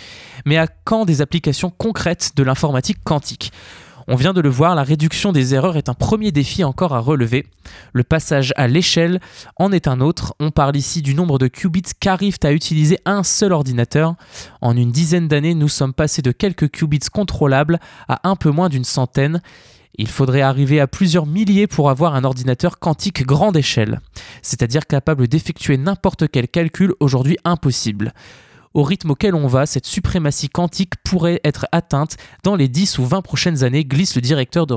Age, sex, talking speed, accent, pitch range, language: 20-39, male, 185 wpm, French, 130-170 Hz, French